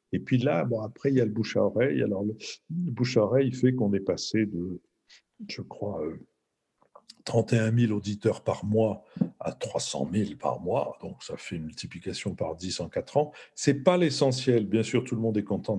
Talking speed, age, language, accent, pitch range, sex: 200 wpm, 50-69, French, French, 95-125 Hz, male